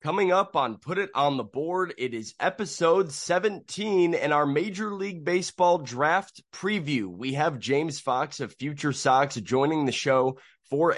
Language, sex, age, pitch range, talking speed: English, male, 20-39, 115-150 Hz, 165 wpm